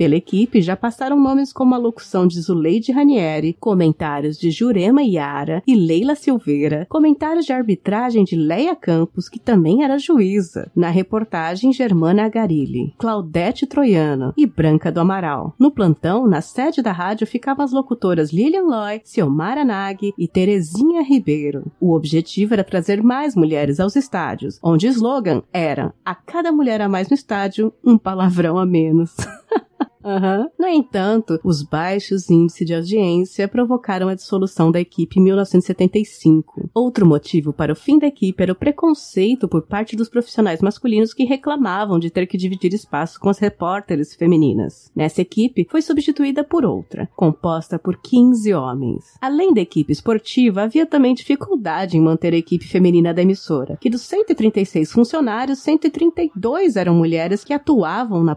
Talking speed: 155 wpm